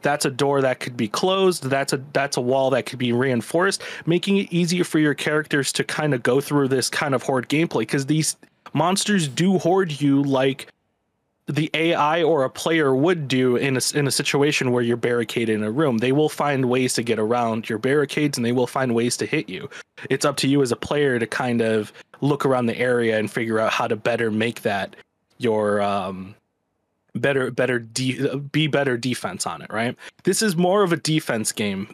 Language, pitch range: English, 120-160 Hz